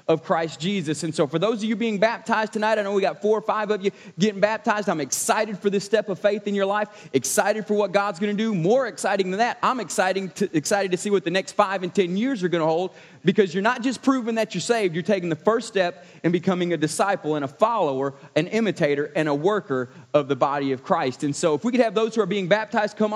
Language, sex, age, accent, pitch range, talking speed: English, male, 30-49, American, 180-220 Hz, 265 wpm